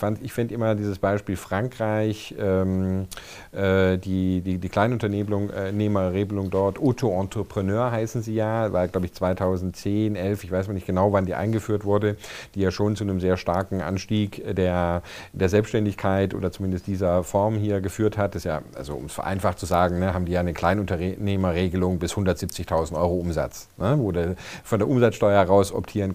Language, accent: German, German